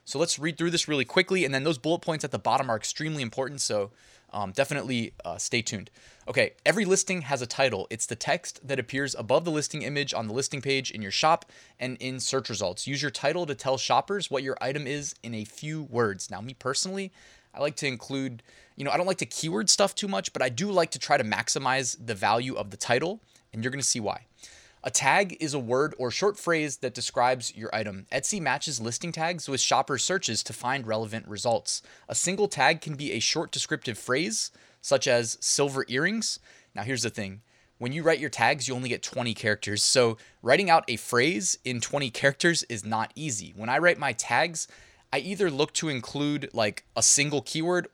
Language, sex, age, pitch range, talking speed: English, male, 20-39, 120-155 Hz, 220 wpm